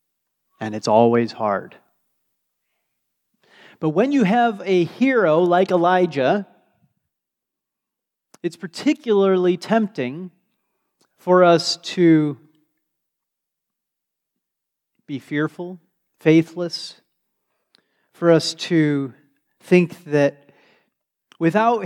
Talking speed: 75 wpm